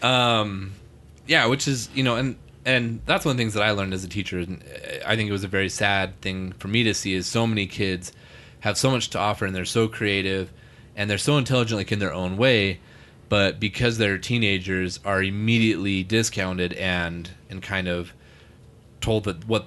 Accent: American